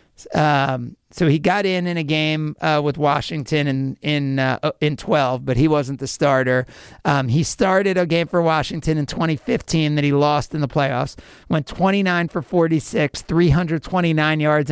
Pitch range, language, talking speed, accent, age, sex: 140-175 Hz, English, 195 wpm, American, 50-69, male